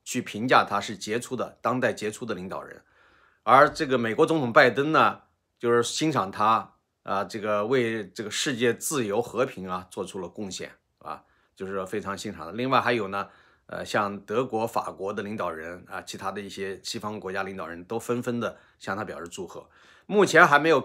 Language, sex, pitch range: Chinese, male, 100-130 Hz